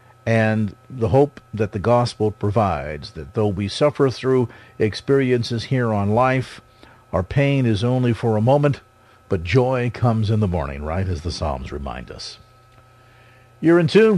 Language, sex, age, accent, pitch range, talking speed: English, male, 50-69, American, 100-130 Hz, 160 wpm